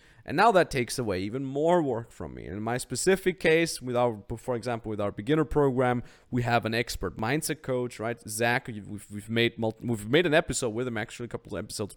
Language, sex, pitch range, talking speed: English, male, 115-145 Hz, 225 wpm